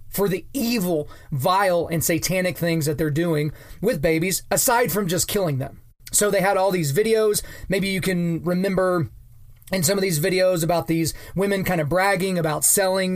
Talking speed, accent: 180 wpm, American